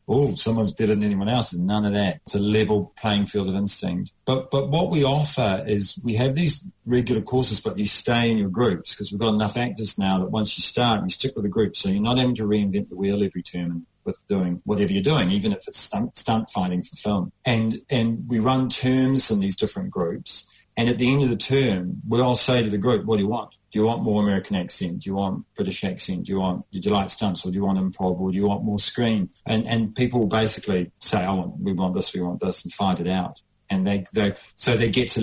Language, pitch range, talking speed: English, 95-120 Hz, 255 wpm